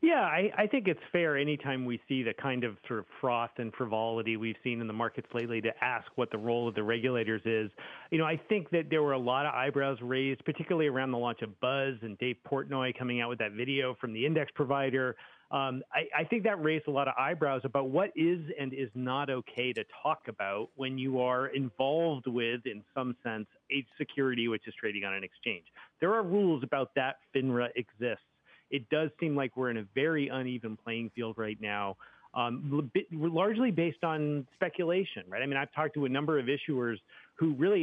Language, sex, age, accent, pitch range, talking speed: English, male, 40-59, American, 120-155 Hz, 215 wpm